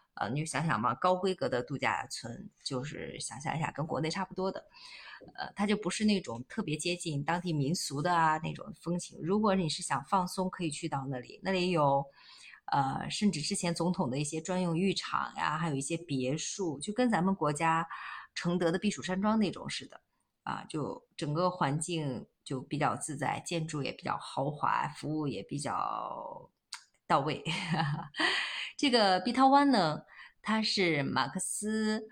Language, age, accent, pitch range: Chinese, 20-39, native, 145-190 Hz